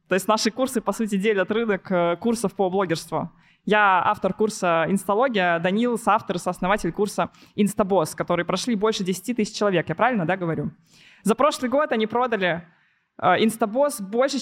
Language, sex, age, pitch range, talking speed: Russian, female, 20-39, 195-250 Hz, 160 wpm